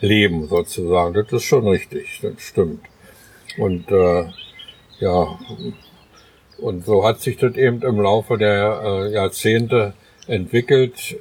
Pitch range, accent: 100-115 Hz, German